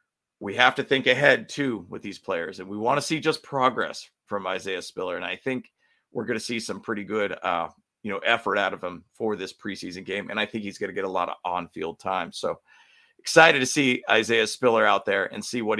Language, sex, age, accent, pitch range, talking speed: English, male, 40-59, American, 100-130 Hz, 245 wpm